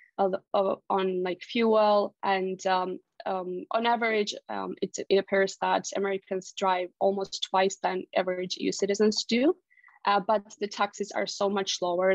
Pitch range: 185-215 Hz